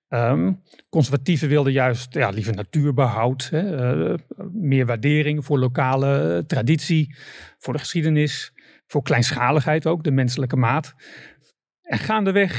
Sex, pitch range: male, 130-160 Hz